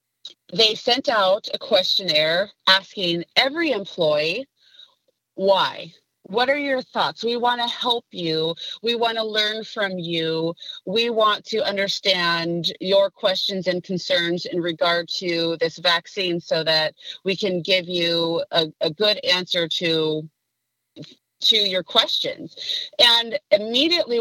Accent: American